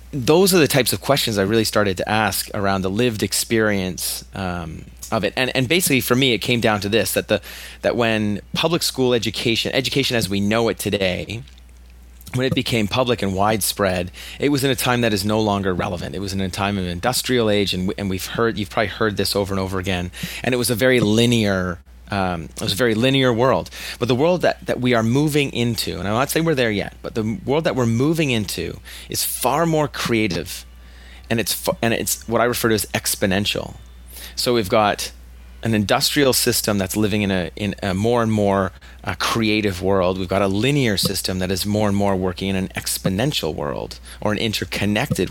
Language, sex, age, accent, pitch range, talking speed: English, male, 30-49, American, 90-120 Hz, 215 wpm